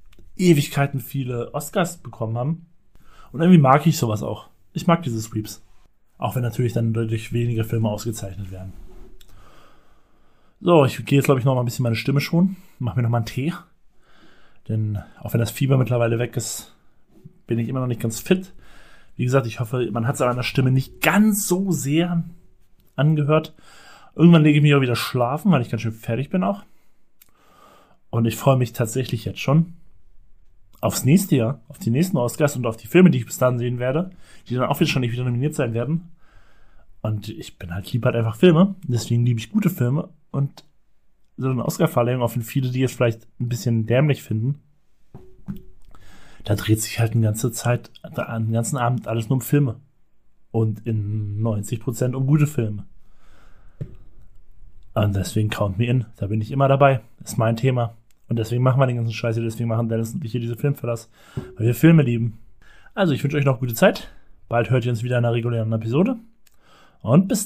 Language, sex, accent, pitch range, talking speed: German, male, German, 110-140 Hz, 195 wpm